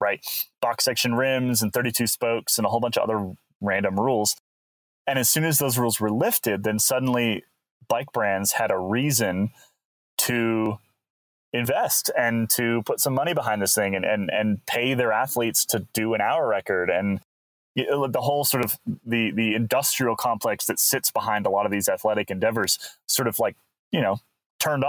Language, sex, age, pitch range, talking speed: English, male, 20-39, 100-125 Hz, 185 wpm